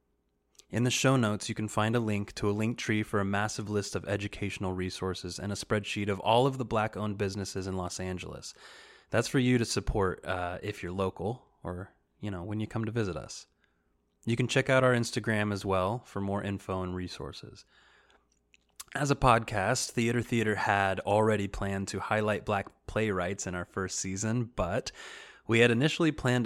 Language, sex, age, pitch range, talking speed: English, male, 20-39, 95-115 Hz, 190 wpm